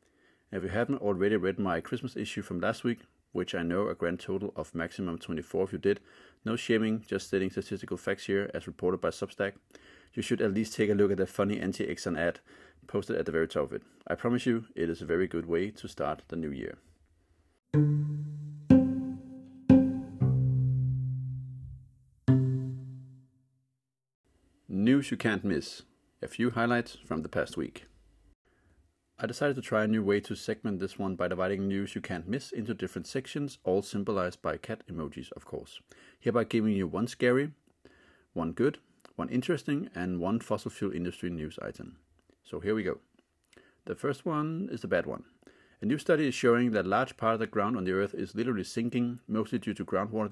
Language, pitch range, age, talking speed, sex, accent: English, 95-130 Hz, 30-49, 180 wpm, male, Danish